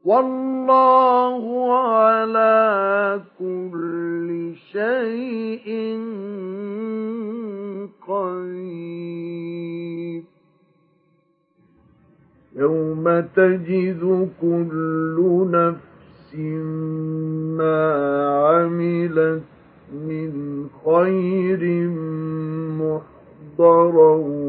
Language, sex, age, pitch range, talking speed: Arabic, male, 50-69, 160-190 Hz, 35 wpm